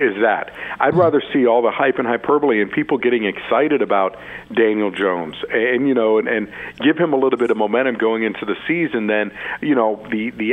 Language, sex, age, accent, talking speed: English, male, 50-69, American, 215 wpm